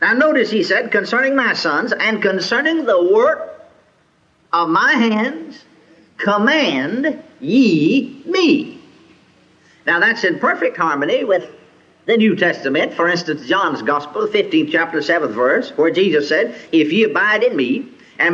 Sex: male